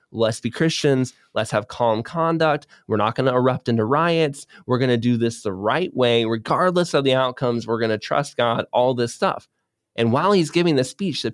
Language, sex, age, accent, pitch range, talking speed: English, male, 20-39, American, 115-145 Hz, 215 wpm